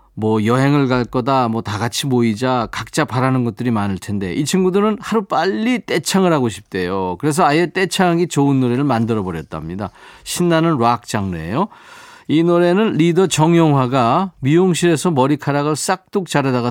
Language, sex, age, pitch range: Korean, male, 40-59, 115-175 Hz